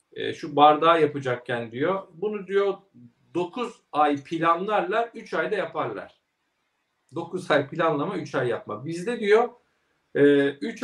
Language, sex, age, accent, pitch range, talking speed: Turkish, male, 50-69, native, 140-205 Hz, 115 wpm